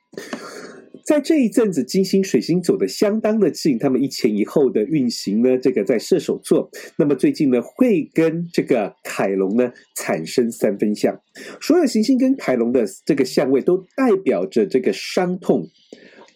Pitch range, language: 155-250 Hz, Chinese